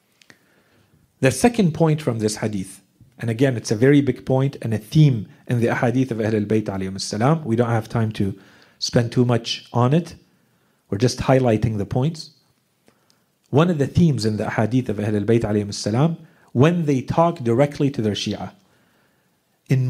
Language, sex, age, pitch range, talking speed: English, male, 40-59, 115-150 Hz, 165 wpm